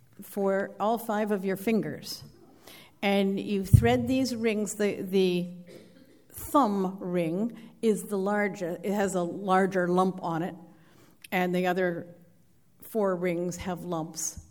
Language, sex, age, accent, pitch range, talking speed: English, female, 50-69, American, 180-225 Hz, 130 wpm